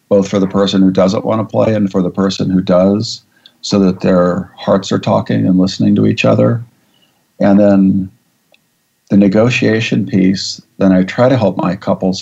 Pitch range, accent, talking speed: 95-105 Hz, American, 180 wpm